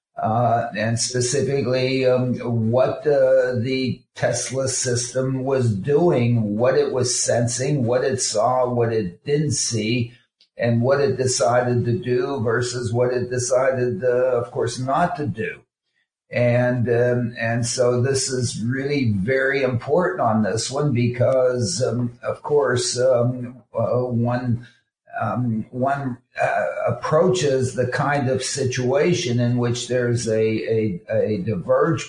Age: 50-69